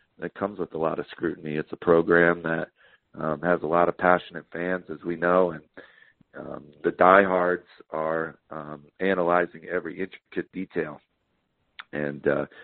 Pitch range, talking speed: 80-95 Hz, 150 wpm